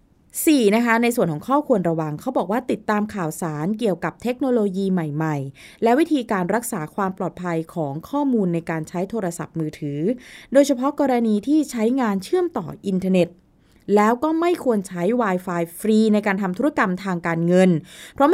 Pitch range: 170-240 Hz